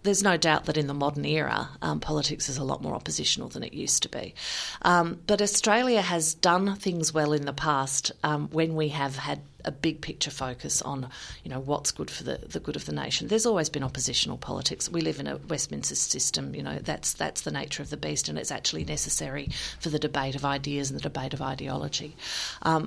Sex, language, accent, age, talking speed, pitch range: female, English, Australian, 40-59, 225 wpm, 135-165 Hz